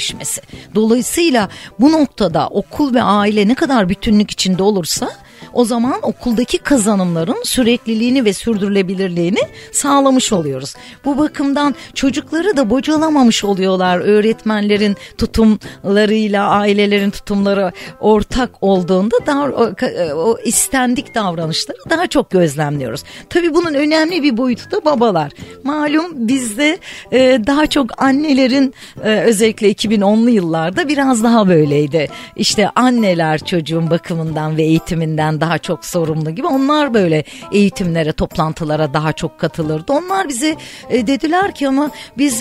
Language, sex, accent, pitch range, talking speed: Turkish, female, native, 195-275 Hz, 115 wpm